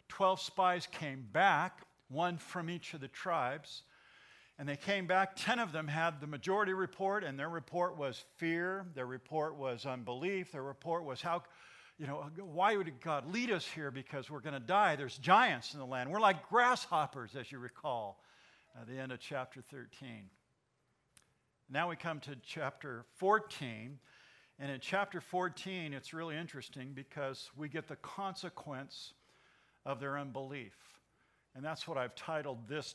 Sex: male